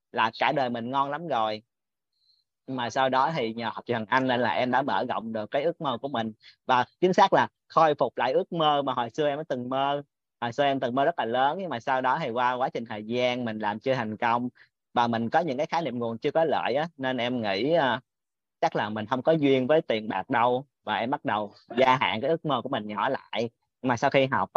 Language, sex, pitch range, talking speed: Vietnamese, male, 115-140 Hz, 270 wpm